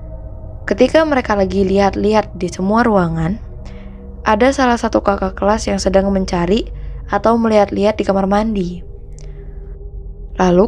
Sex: female